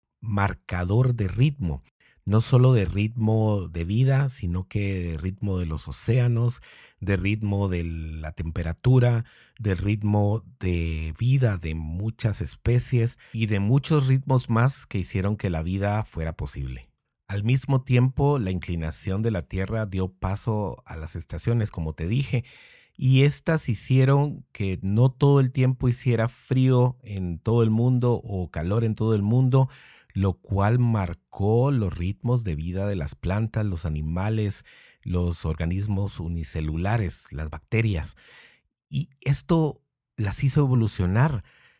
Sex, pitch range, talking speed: male, 90-125 Hz, 140 wpm